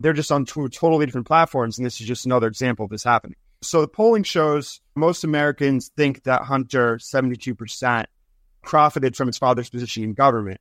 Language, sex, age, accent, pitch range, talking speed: English, male, 30-49, American, 115-150 Hz, 185 wpm